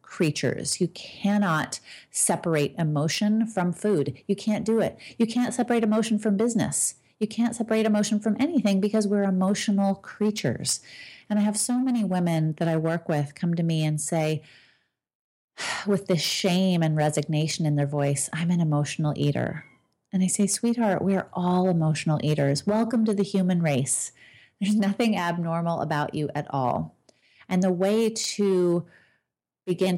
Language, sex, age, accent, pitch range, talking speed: English, female, 30-49, American, 160-215 Hz, 160 wpm